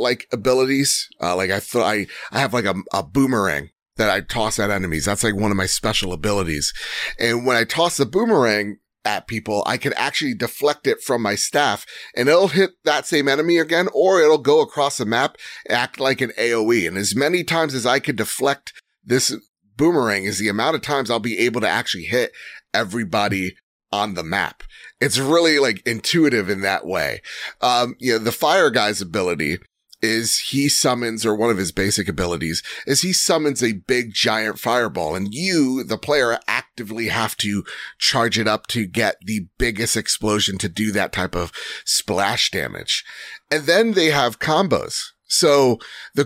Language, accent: English, American